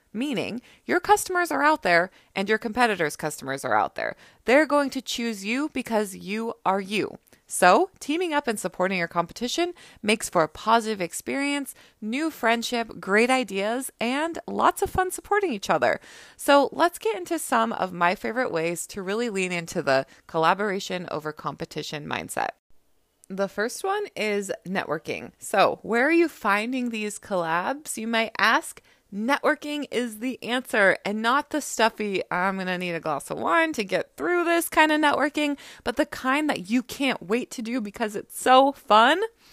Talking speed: 170 wpm